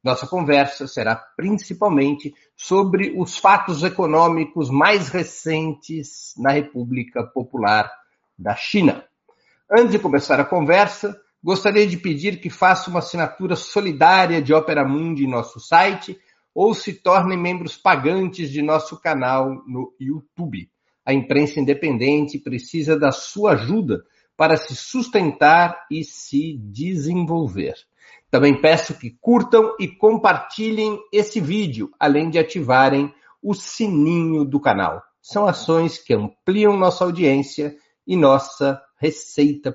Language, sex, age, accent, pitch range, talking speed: Portuguese, male, 60-79, Brazilian, 140-185 Hz, 120 wpm